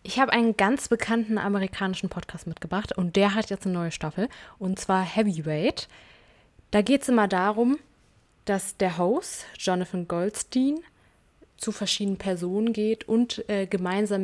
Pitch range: 190-235 Hz